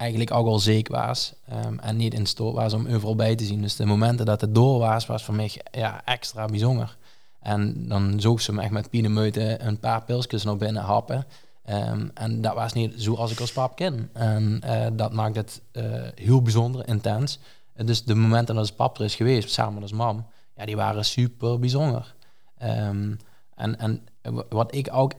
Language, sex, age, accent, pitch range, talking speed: Dutch, male, 20-39, Dutch, 110-125 Hz, 215 wpm